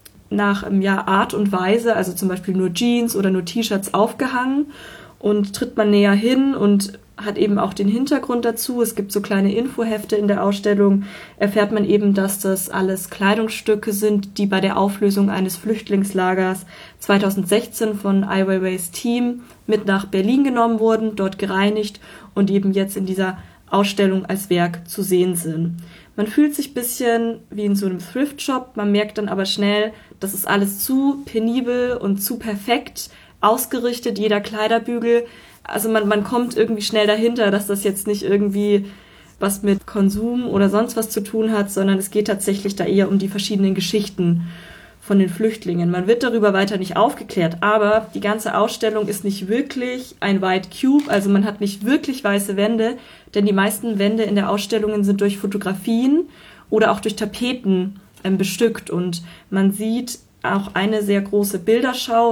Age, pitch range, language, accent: 20-39, 195-225 Hz, German, German